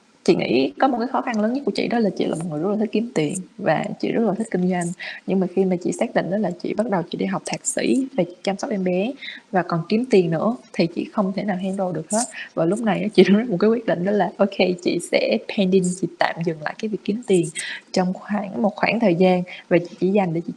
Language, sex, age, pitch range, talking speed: Vietnamese, female, 20-39, 180-220 Hz, 290 wpm